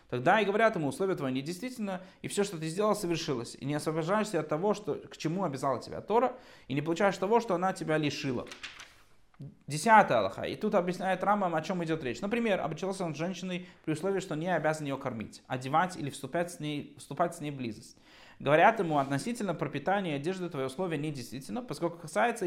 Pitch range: 140-200 Hz